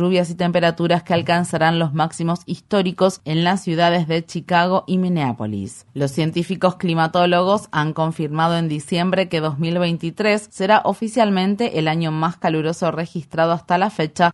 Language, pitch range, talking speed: Spanish, 155-175 Hz, 140 wpm